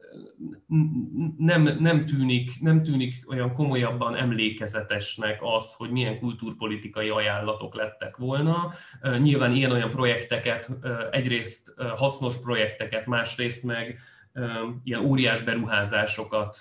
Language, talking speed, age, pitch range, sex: Hungarian, 100 wpm, 30-49, 110-125 Hz, male